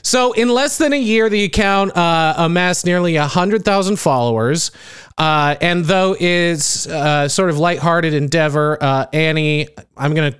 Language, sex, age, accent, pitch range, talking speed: English, male, 30-49, American, 130-175 Hz, 160 wpm